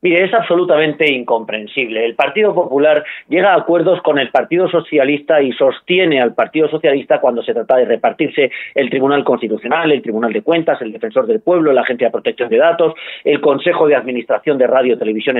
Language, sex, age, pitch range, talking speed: Spanish, male, 40-59, 150-200 Hz, 190 wpm